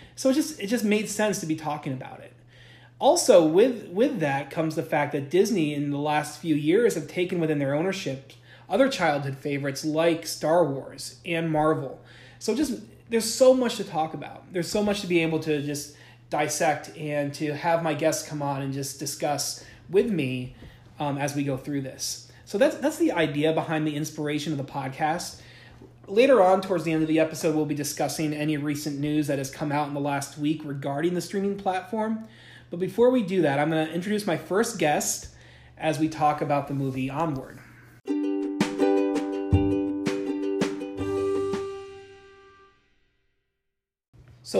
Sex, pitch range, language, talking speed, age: male, 135-170 Hz, English, 175 wpm, 20-39